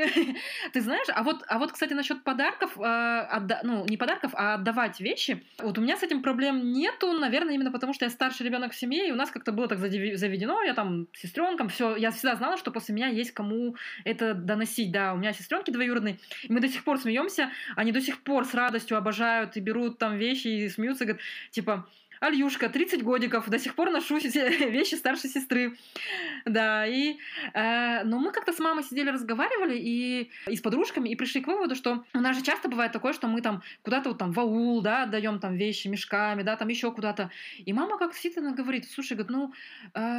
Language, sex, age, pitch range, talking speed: Russian, female, 20-39, 225-285 Hz, 215 wpm